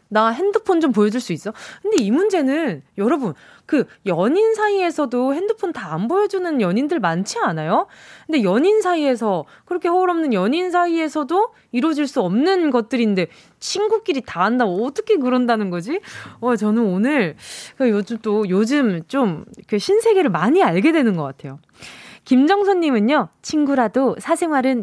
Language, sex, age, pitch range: Korean, female, 20-39, 215-345 Hz